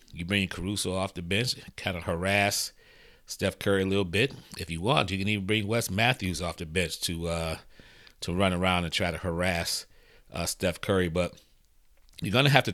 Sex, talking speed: male, 205 wpm